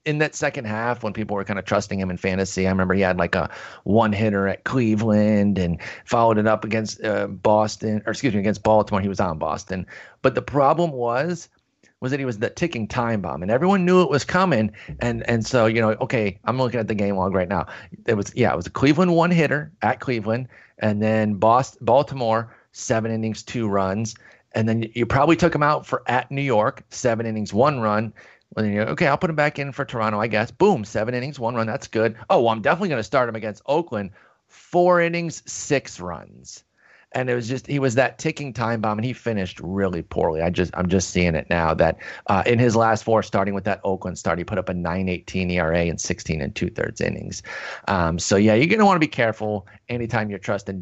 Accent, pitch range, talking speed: American, 100-130 Hz, 225 wpm